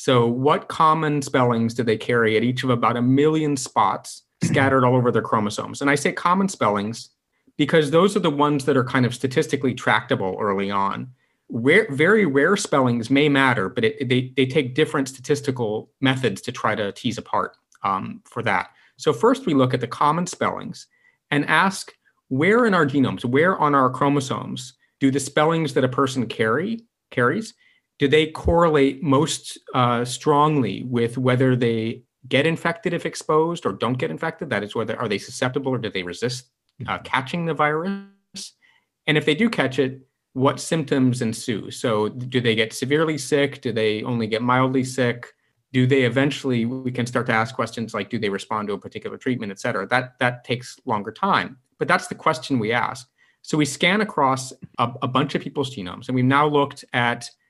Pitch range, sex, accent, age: 120-155 Hz, male, American, 30-49